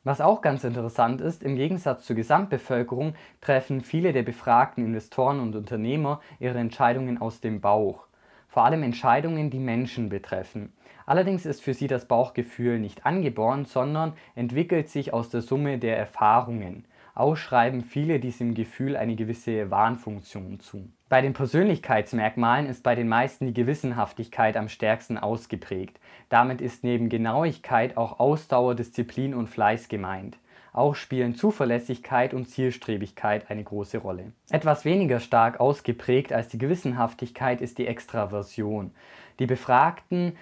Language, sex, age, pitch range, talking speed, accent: German, male, 20-39, 115-135 Hz, 140 wpm, German